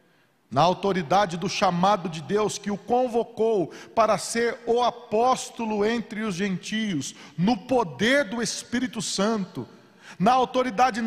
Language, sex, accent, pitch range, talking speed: Portuguese, male, Brazilian, 155-235 Hz, 125 wpm